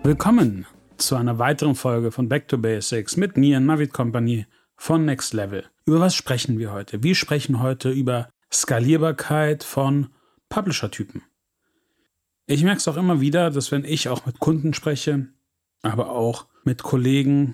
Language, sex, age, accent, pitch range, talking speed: German, male, 40-59, German, 125-155 Hz, 155 wpm